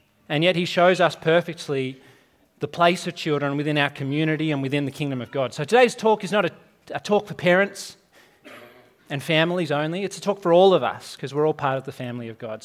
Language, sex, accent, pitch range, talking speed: English, male, Australian, 135-175 Hz, 230 wpm